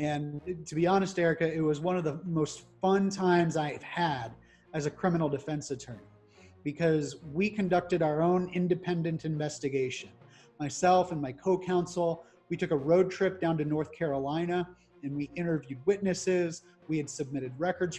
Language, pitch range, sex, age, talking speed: English, 145-180 Hz, male, 30-49, 160 wpm